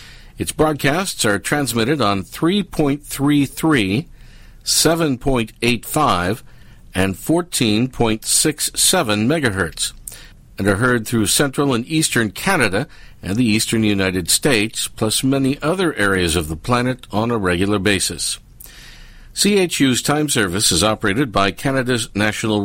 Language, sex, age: English, male, 50-69